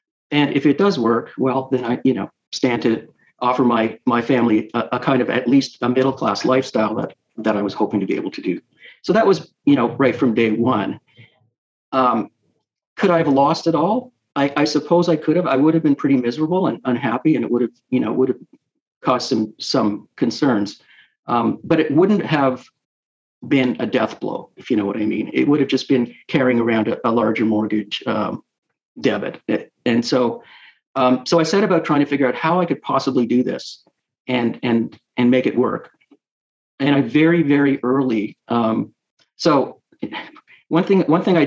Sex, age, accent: male, 50-69, American